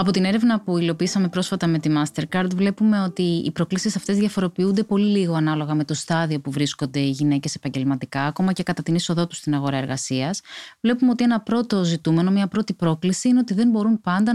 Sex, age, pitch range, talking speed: female, 20-39, 165-225 Hz, 200 wpm